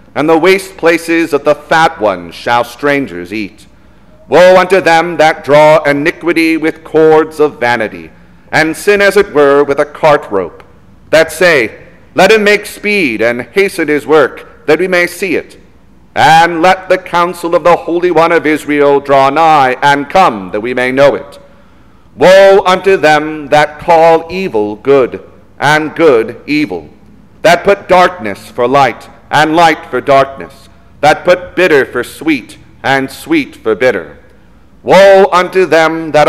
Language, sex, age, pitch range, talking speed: English, male, 40-59, 135-175 Hz, 160 wpm